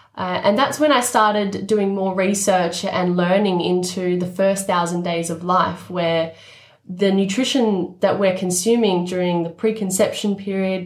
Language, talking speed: English, 155 wpm